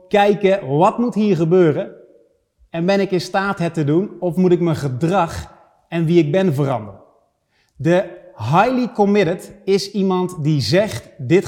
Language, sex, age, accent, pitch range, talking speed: Dutch, male, 30-49, Dutch, 160-205 Hz, 160 wpm